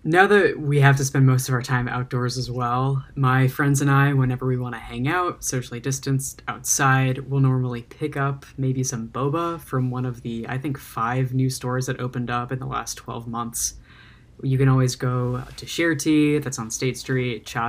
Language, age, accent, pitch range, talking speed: English, 10-29, American, 125-140 Hz, 210 wpm